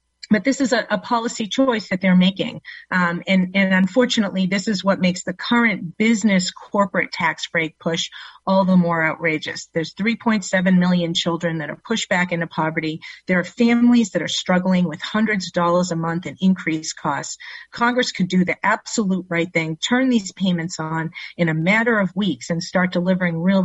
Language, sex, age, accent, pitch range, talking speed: English, female, 40-59, American, 170-225 Hz, 190 wpm